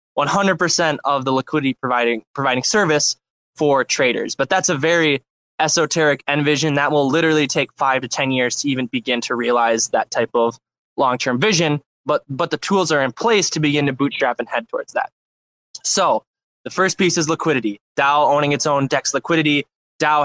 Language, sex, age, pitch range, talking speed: English, male, 20-39, 130-165 Hz, 185 wpm